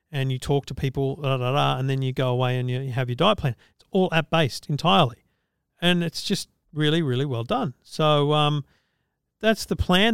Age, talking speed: 40-59, 205 wpm